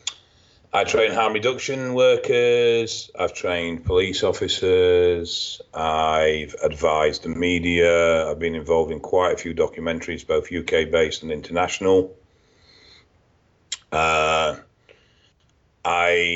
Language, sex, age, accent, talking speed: English, male, 40-59, British, 105 wpm